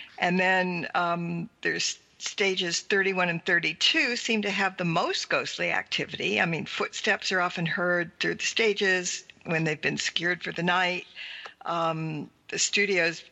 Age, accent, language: 60-79, American, English